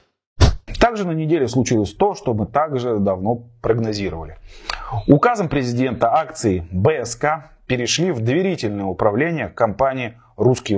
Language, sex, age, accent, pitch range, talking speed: Russian, male, 30-49, native, 115-155 Hz, 110 wpm